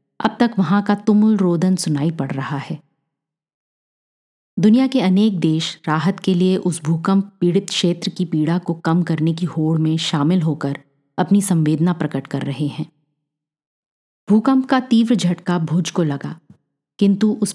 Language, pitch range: Hindi, 155-195 Hz